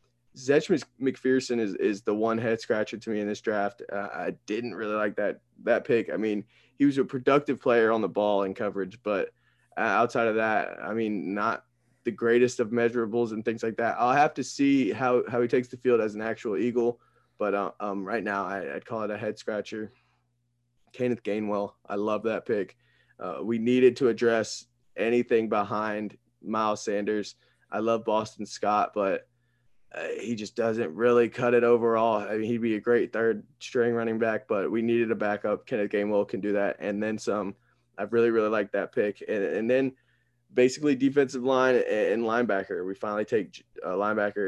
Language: English